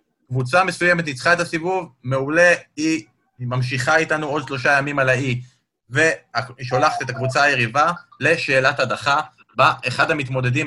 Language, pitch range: Hebrew, 125-165 Hz